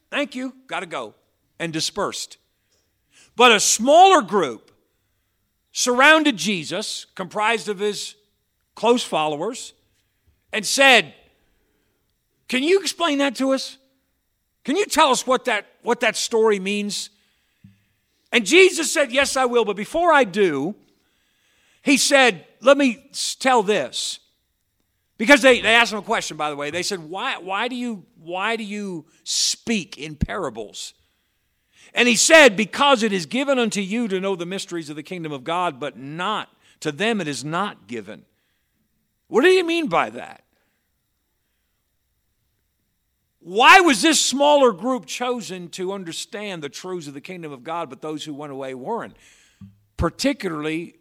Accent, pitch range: American, 165-260 Hz